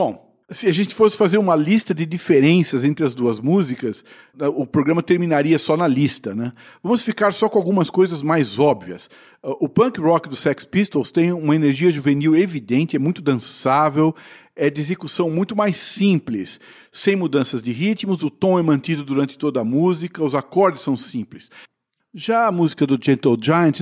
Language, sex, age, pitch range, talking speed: Portuguese, male, 50-69, 145-190 Hz, 180 wpm